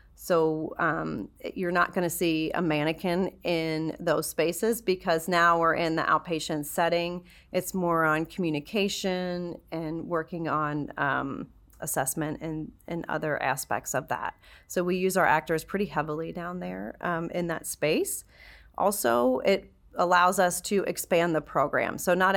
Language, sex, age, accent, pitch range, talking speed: English, female, 30-49, American, 155-175 Hz, 155 wpm